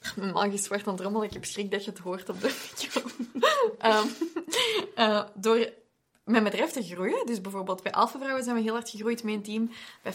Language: Dutch